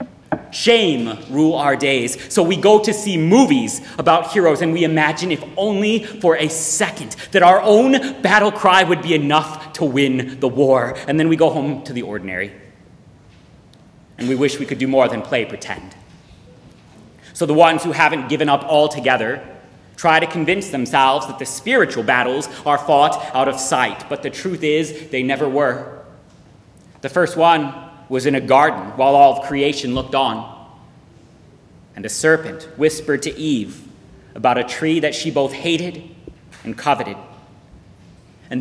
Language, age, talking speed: English, 30-49, 165 wpm